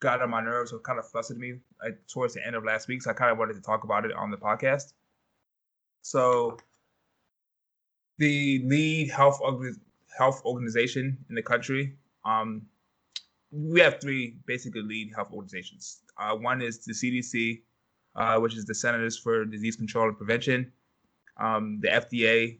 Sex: male